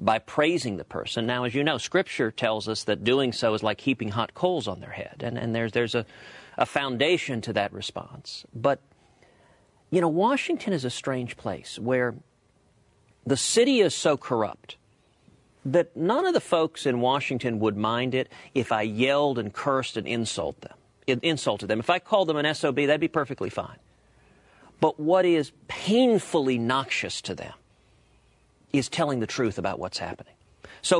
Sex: male